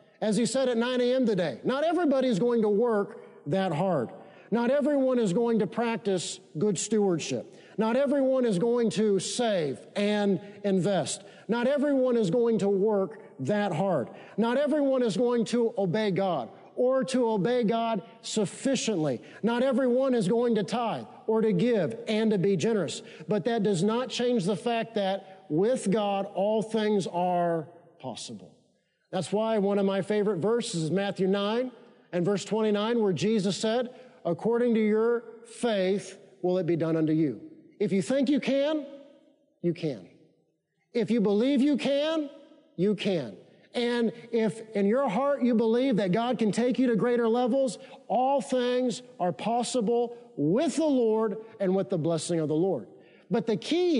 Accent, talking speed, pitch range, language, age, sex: American, 165 wpm, 195-245 Hz, English, 40-59, male